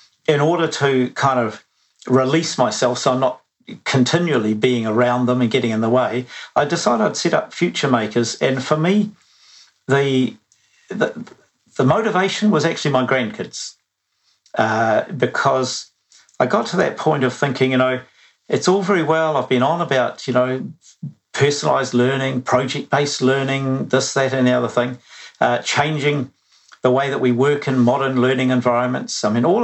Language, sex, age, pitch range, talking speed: English, male, 50-69, 125-145 Hz, 165 wpm